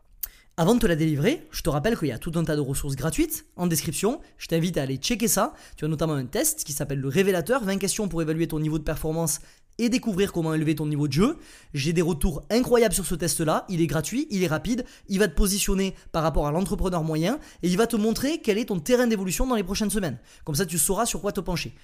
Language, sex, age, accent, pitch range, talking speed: French, male, 20-39, French, 160-230 Hz, 260 wpm